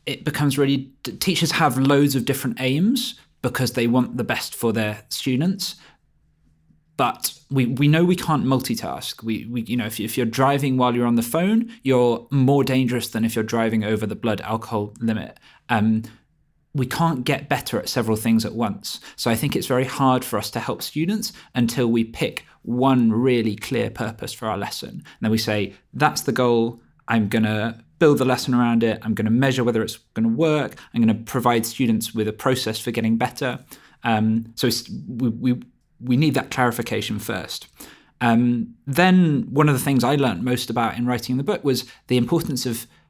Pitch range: 115-135 Hz